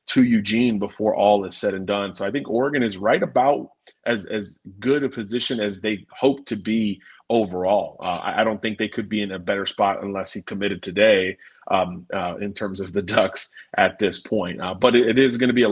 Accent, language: American, English